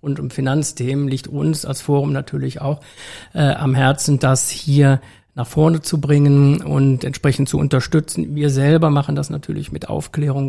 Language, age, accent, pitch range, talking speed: German, 50-69, German, 135-150 Hz, 165 wpm